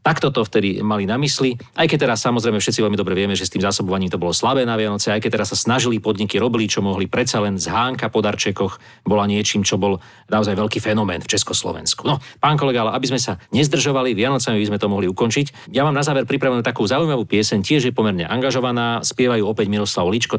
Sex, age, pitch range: male, 40-59, 105-130 Hz